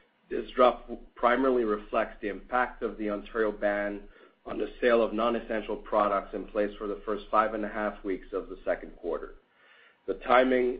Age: 40-59